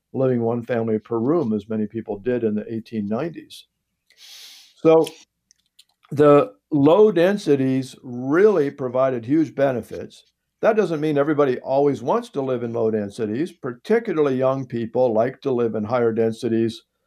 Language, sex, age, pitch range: English, male, 60-79, 115-155 Hz